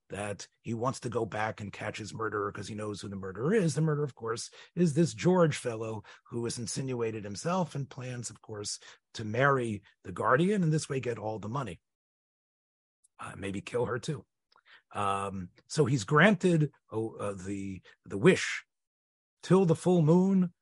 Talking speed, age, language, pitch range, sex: 180 wpm, 40-59, English, 115-165 Hz, male